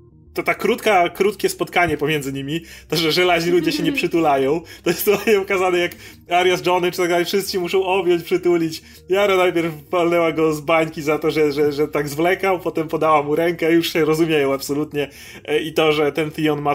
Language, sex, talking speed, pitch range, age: Polish, male, 200 wpm, 150-180 Hz, 30-49